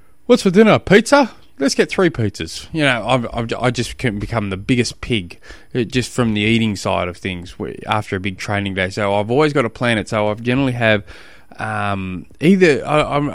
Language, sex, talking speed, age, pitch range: English, male, 200 wpm, 20-39, 100-125 Hz